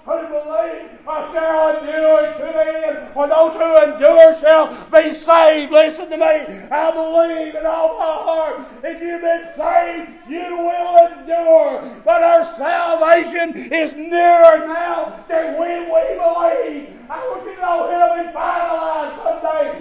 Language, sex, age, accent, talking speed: English, male, 30-49, American, 125 wpm